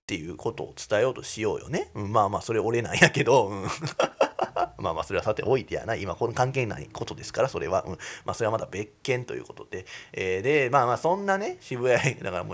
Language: Japanese